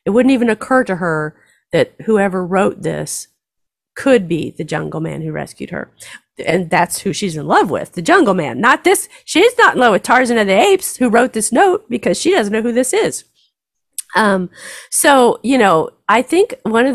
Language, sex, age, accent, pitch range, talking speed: English, female, 40-59, American, 180-255 Hz, 205 wpm